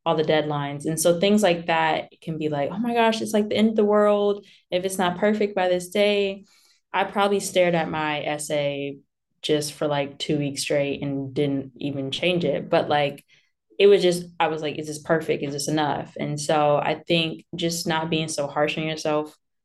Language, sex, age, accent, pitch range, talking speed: English, female, 20-39, American, 150-170 Hz, 215 wpm